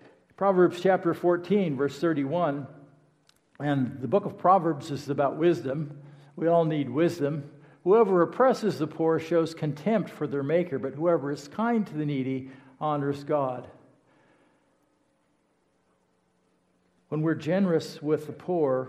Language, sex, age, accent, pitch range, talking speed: English, male, 60-79, American, 135-170 Hz, 130 wpm